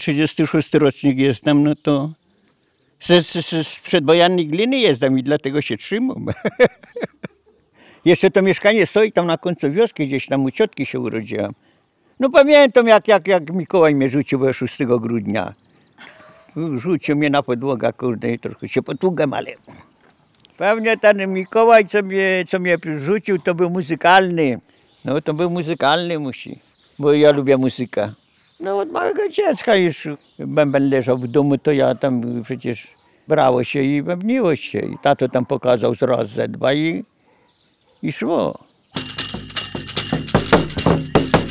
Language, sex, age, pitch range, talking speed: Polish, male, 60-79, 140-205 Hz, 140 wpm